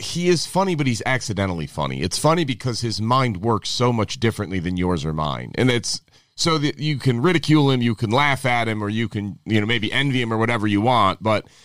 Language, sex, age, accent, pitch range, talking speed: English, male, 30-49, American, 105-135 Hz, 235 wpm